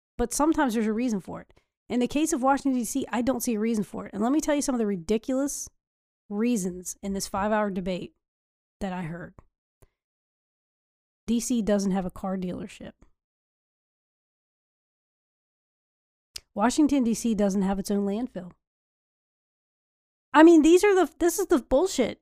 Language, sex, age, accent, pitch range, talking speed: English, female, 30-49, American, 205-265 Hz, 160 wpm